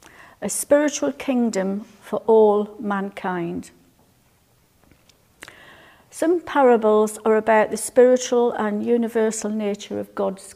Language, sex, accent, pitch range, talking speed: English, female, British, 200-240 Hz, 95 wpm